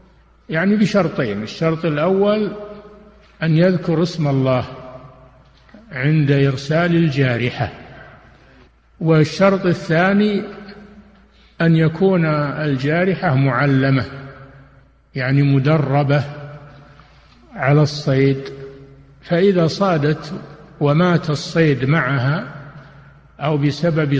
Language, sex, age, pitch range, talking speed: Arabic, male, 50-69, 135-170 Hz, 70 wpm